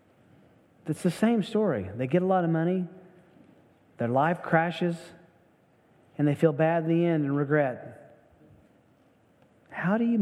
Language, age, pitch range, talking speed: English, 40-59, 135-170 Hz, 145 wpm